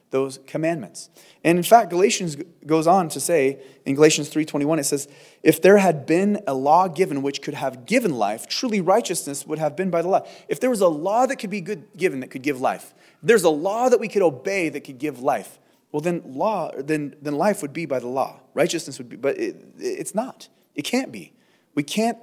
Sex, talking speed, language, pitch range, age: male, 230 wpm, English, 145-205 Hz, 30-49